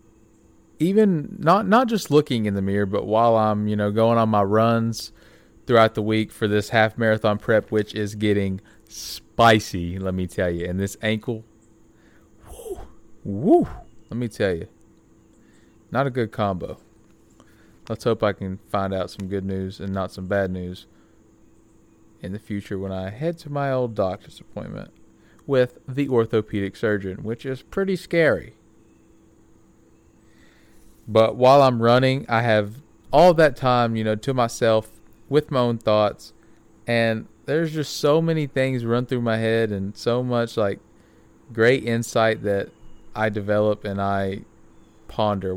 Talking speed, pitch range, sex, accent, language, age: 155 wpm, 100-120 Hz, male, American, English, 20-39